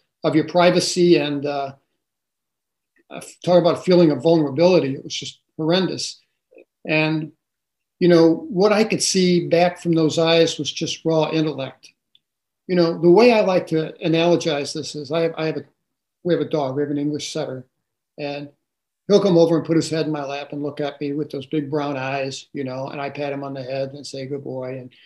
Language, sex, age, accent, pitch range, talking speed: English, male, 50-69, American, 145-170 Hz, 210 wpm